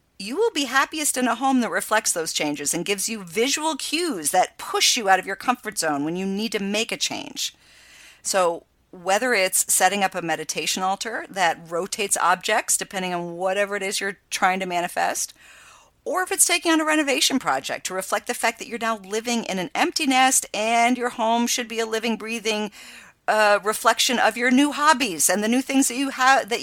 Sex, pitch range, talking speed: female, 190-255 Hz, 210 wpm